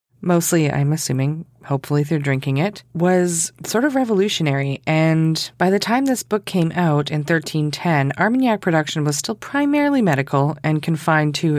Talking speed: 155 wpm